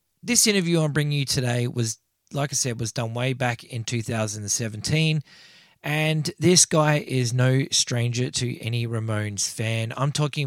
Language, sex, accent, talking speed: English, male, Australian, 160 wpm